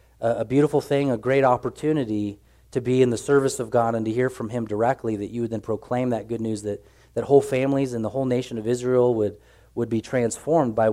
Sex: male